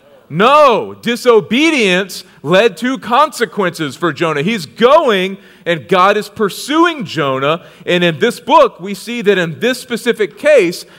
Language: English